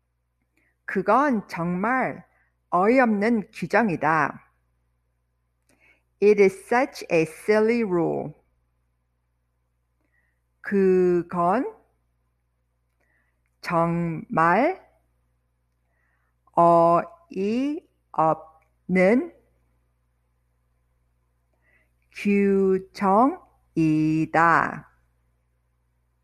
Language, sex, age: English, female, 50-69